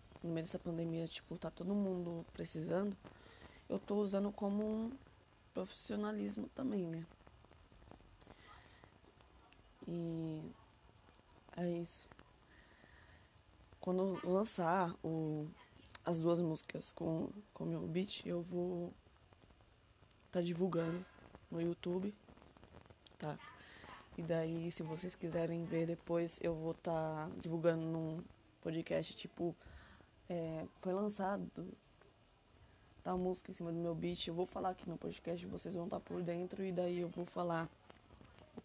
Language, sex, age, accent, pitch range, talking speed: Portuguese, female, 20-39, Brazilian, 155-180 Hz, 125 wpm